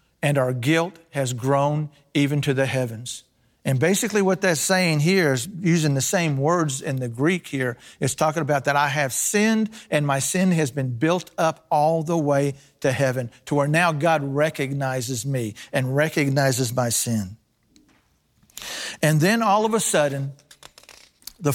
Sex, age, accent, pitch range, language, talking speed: male, 50-69, American, 135-160 Hz, English, 165 wpm